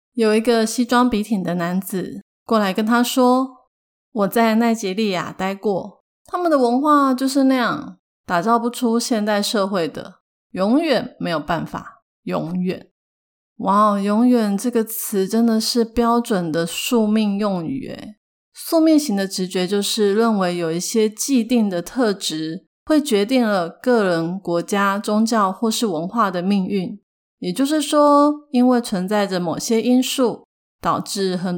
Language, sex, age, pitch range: Chinese, female, 30-49, 190-245 Hz